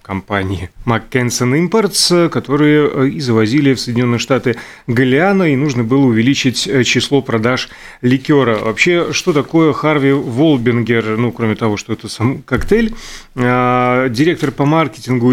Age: 30-49